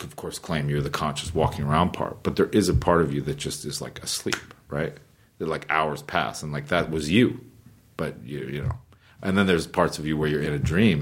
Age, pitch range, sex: 40-59, 75-95 Hz, male